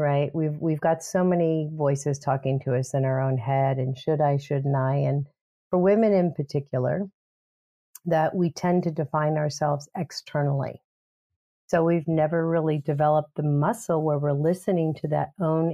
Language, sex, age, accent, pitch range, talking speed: English, female, 50-69, American, 145-175 Hz, 170 wpm